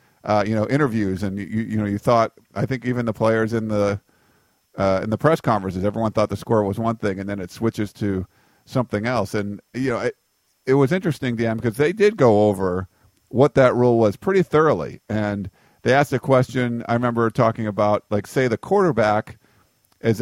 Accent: American